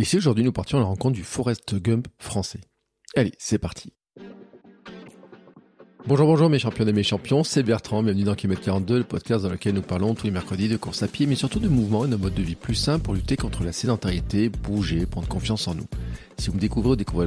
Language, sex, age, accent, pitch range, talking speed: French, male, 40-59, French, 90-120 Hz, 235 wpm